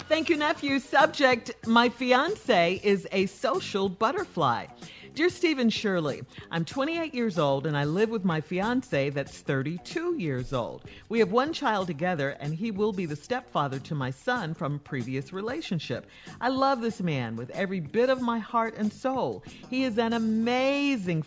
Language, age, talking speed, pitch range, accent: English, 50-69, 170 wpm, 150-235 Hz, American